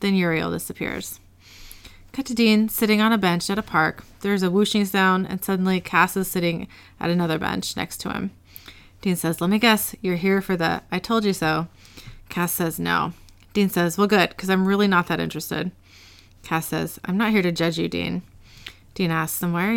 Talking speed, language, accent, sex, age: 205 wpm, English, American, female, 30-49